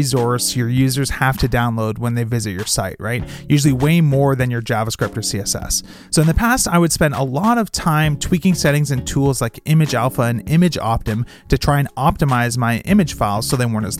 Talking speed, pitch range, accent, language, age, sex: 225 wpm, 125-165 Hz, American, English, 30-49, male